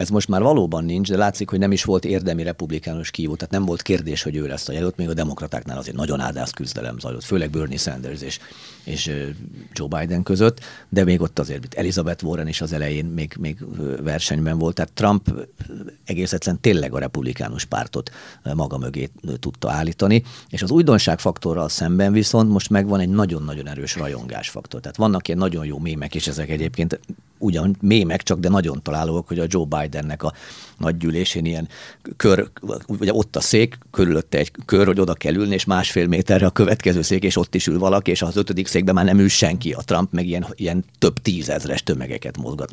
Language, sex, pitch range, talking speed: Hungarian, male, 80-100 Hz, 195 wpm